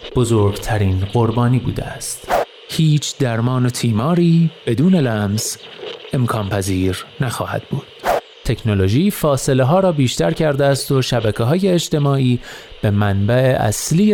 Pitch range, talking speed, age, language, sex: 110-155 Hz, 120 wpm, 30-49, Persian, male